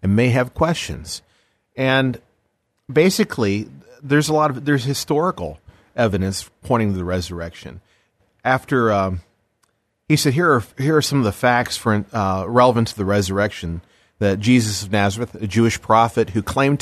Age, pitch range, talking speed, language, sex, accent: 40-59, 100-130 Hz, 155 wpm, English, male, American